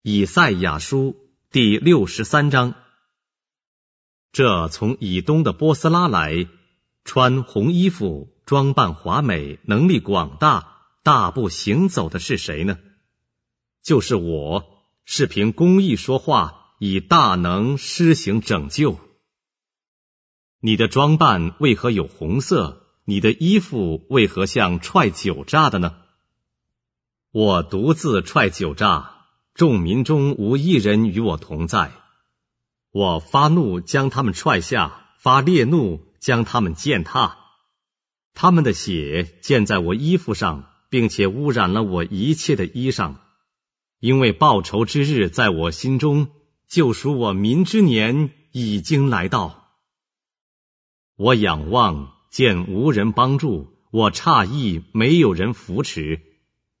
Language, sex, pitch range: English, male, 90-145 Hz